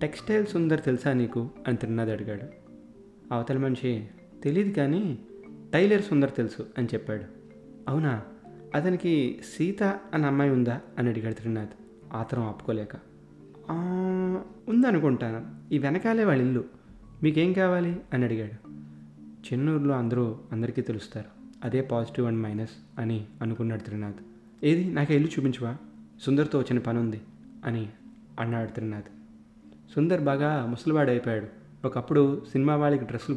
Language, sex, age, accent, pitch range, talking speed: Telugu, male, 30-49, native, 110-140 Hz, 120 wpm